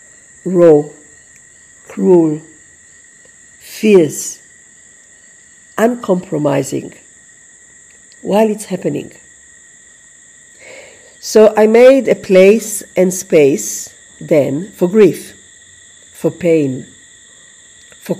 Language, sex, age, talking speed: English, female, 50-69, 65 wpm